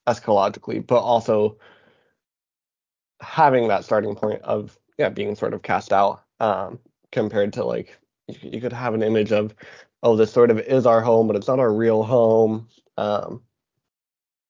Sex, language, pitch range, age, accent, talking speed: male, English, 110-130 Hz, 20-39, American, 155 wpm